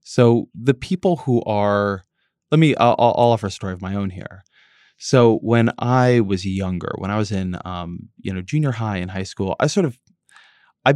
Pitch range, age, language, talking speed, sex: 95-120 Hz, 20-39, English, 205 wpm, male